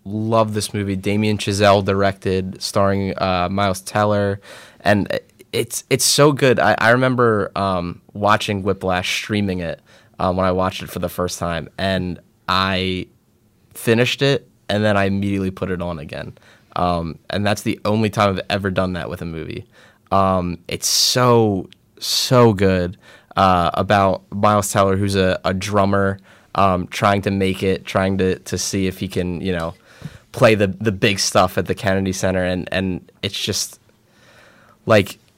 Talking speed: 165 wpm